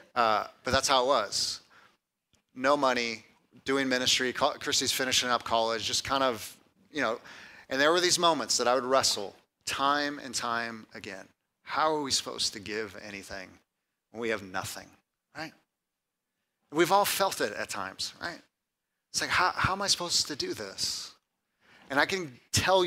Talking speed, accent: 175 wpm, American